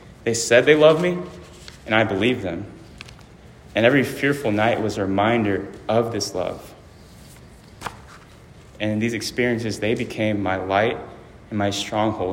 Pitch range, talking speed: 100-120 Hz, 145 wpm